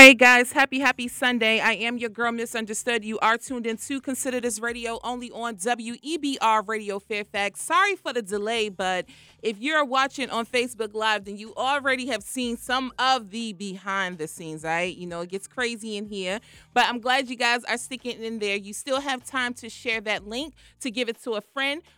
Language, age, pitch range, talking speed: English, 30-49, 200-250 Hz, 210 wpm